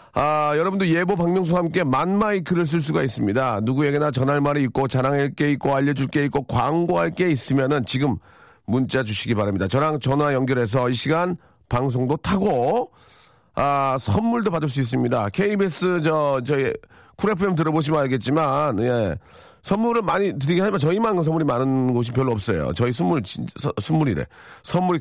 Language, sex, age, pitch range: Korean, male, 40-59, 125-175 Hz